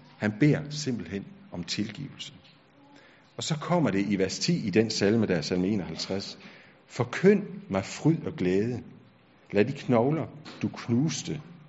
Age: 50-69